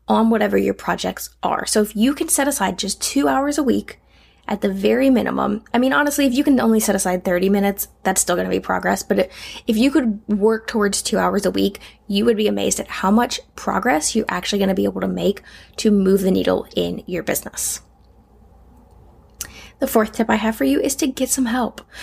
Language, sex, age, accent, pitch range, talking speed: English, female, 10-29, American, 195-240 Hz, 220 wpm